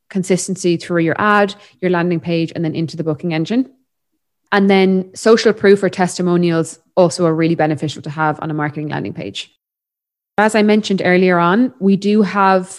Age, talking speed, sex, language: 20-39, 180 wpm, female, English